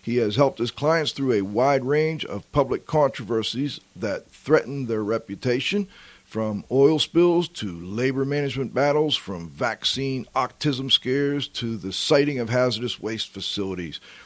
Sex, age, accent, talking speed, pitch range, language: male, 50-69, American, 145 wpm, 105-140 Hz, English